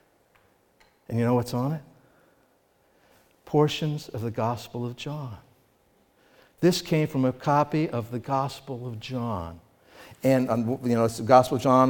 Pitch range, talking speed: 125-190 Hz, 155 wpm